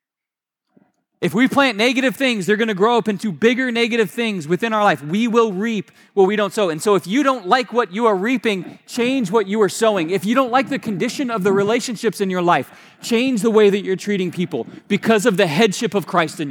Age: 20-39